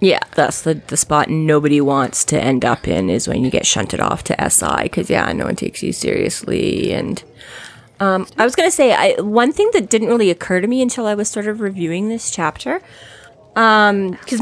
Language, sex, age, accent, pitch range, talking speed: English, female, 30-49, American, 155-205 Hz, 210 wpm